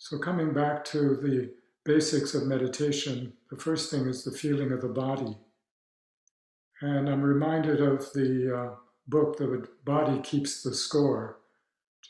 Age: 60-79